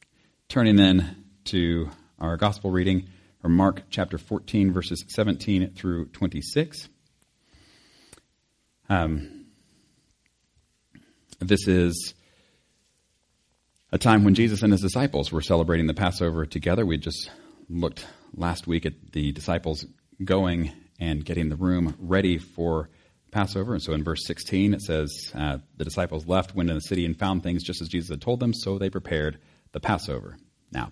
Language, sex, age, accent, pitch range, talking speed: English, male, 40-59, American, 85-110 Hz, 145 wpm